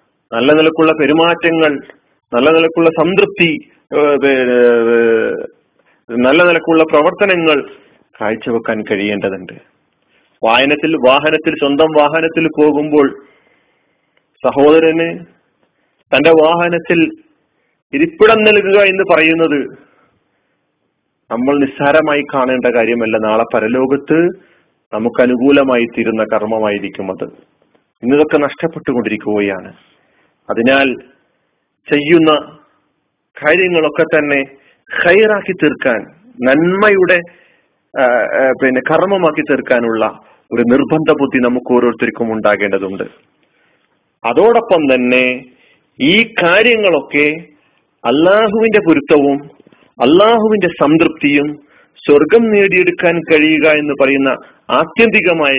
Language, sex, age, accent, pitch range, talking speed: Malayalam, male, 30-49, native, 125-165 Hz, 75 wpm